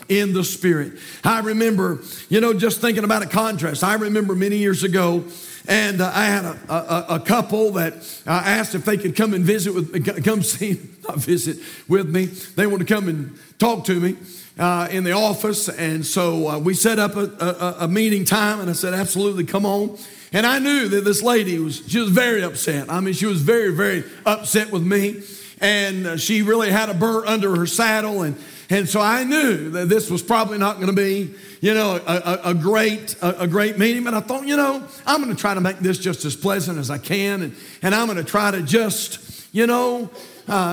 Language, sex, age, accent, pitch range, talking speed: English, male, 50-69, American, 175-220 Hz, 225 wpm